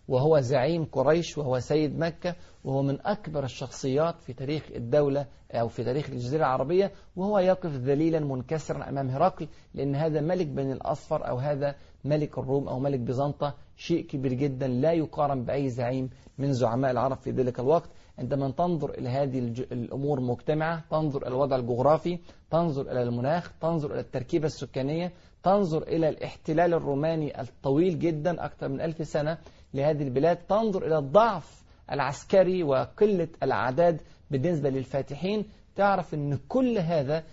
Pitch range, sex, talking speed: 130-165 Hz, male, 145 wpm